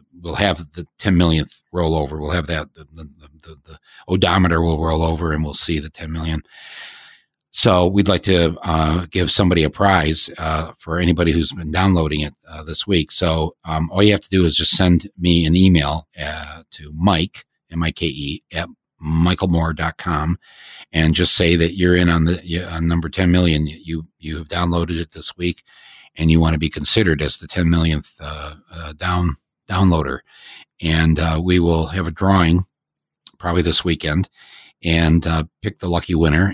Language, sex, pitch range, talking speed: English, male, 80-90 Hz, 180 wpm